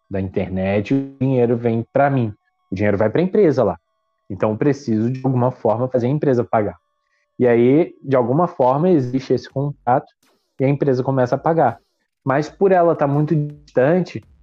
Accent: Brazilian